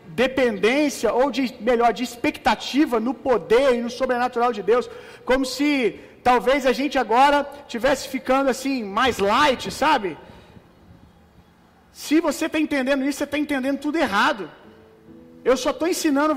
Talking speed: 145 wpm